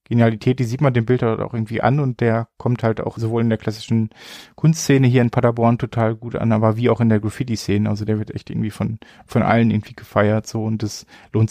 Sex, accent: male, German